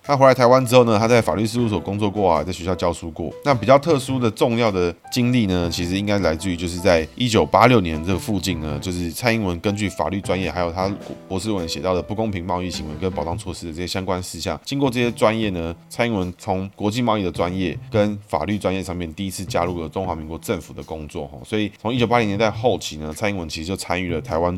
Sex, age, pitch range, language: male, 20-39, 85-110 Hz, Chinese